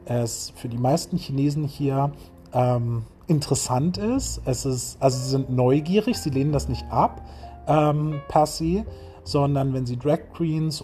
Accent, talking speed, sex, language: German, 155 wpm, male, German